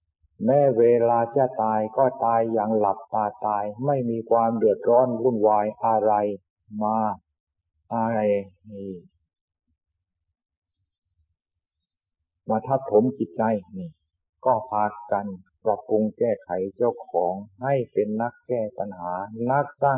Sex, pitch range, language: male, 95-120 Hz, Thai